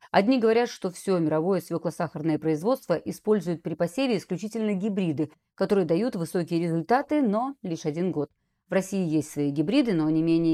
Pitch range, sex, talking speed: 155-220 Hz, female, 160 wpm